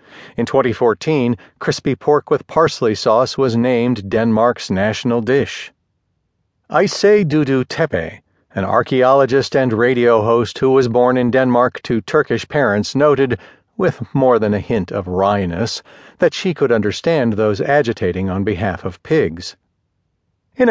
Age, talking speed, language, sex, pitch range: 40-59, 135 wpm, English, male, 105-145 Hz